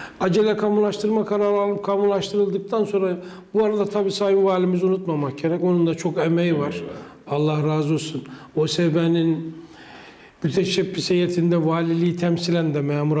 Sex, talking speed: male, 125 wpm